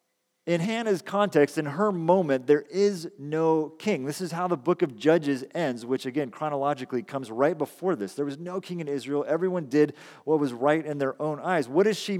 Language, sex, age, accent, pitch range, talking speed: English, male, 40-59, American, 130-160 Hz, 210 wpm